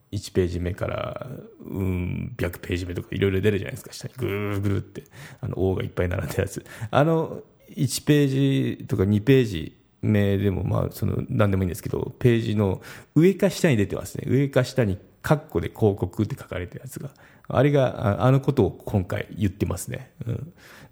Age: 40-59